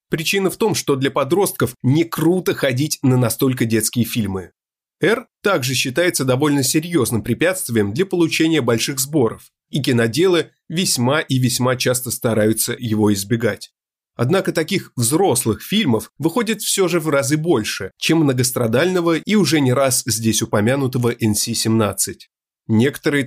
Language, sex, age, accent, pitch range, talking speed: Russian, male, 30-49, native, 120-165 Hz, 135 wpm